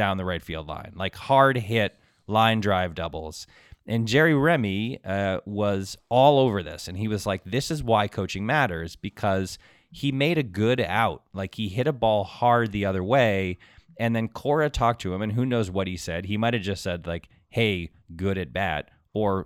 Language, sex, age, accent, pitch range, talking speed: English, male, 20-39, American, 85-115 Hz, 200 wpm